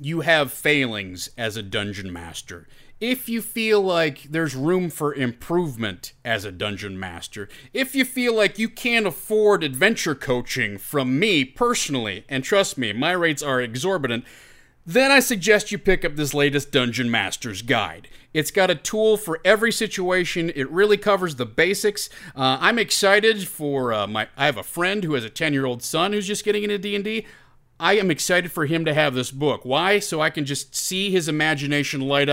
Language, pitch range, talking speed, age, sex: English, 135-205 Hz, 185 wpm, 30-49, male